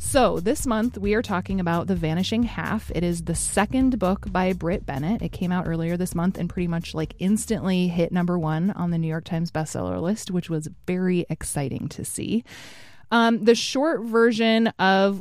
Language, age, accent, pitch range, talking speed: English, 20-39, American, 170-205 Hz, 195 wpm